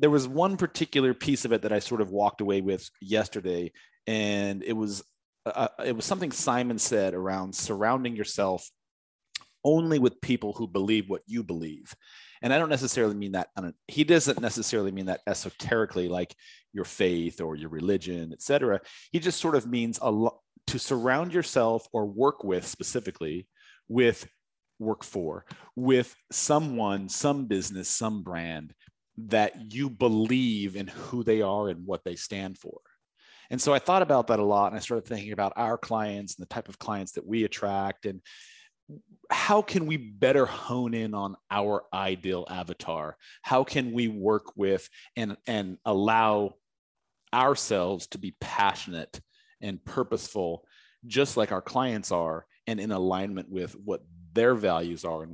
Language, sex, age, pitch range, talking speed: English, male, 30-49, 95-125 Hz, 165 wpm